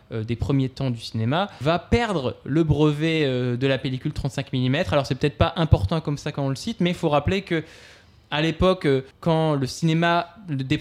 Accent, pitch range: French, 130-160 Hz